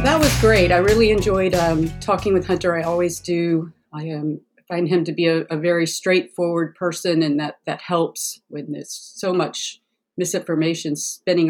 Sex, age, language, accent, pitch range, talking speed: female, 40-59, English, American, 160-180 Hz, 175 wpm